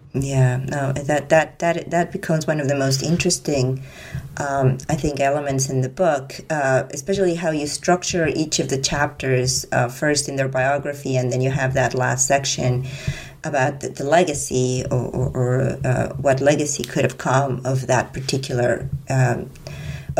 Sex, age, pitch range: female, 30-49, 130-155 Hz